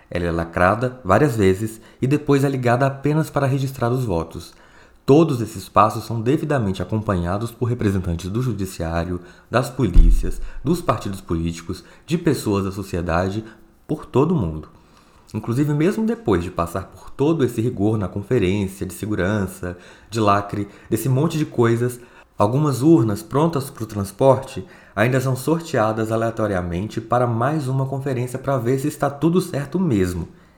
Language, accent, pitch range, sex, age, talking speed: Portuguese, Brazilian, 95-140 Hz, male, 20-39, 150 wpm